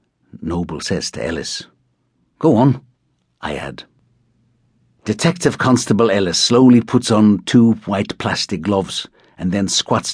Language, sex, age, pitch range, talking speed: English, male, 60-79, 80-115 Hz, 125 wpm